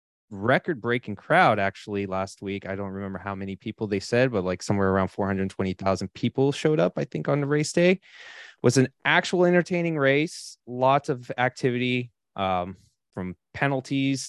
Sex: male